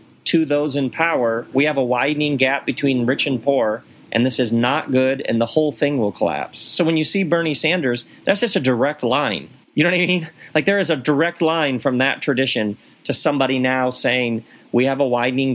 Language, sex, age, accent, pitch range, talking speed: English, male, 40-59, American, 110-140 Hz, 220 wpm